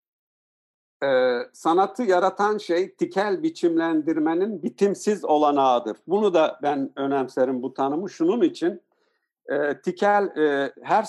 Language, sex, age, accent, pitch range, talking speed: Turkish, male, 50-69, native, 130-185 Hz, 110 wpm